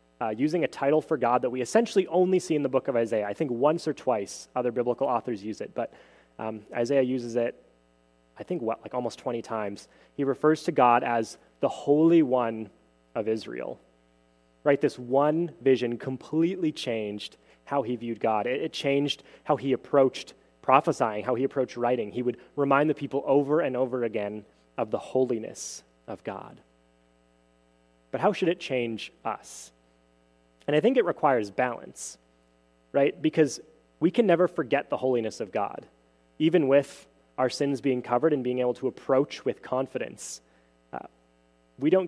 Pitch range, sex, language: 100-140 Hz, male, English